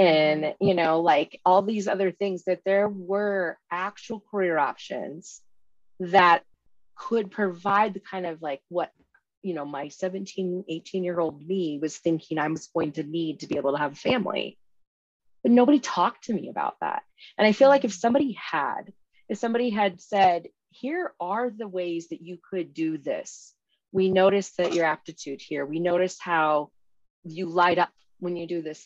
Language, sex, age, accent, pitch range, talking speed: English, female, 30-49, American, 160-195 Hz, 180 wpm